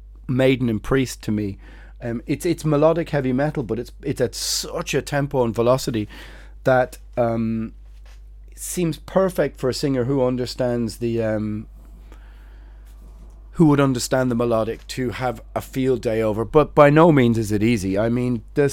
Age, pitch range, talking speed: 30-49, 110-145 Hz, 175 wpm